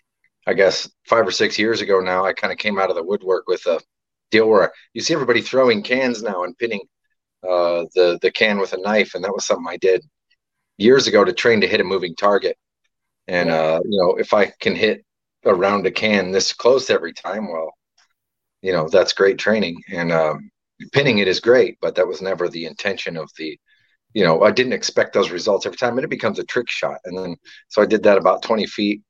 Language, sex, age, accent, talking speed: English, male, 40-59, American, 225 wpm